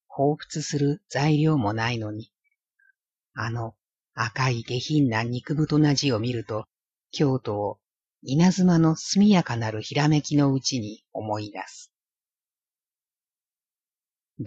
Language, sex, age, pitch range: Japanese, female, 50-69, 110-150 Hz